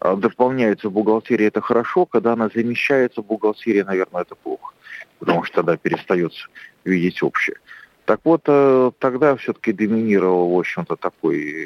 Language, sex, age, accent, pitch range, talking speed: Russian, male, 40-59, native, 100-165 Hz, 145 wpm